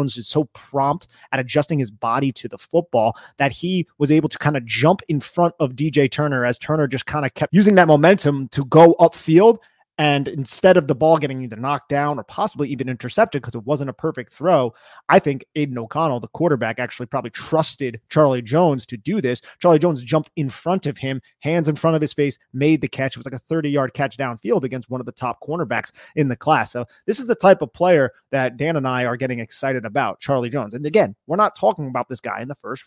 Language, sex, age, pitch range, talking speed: English, male, 30-49, 130-160 Hz, 235 wpm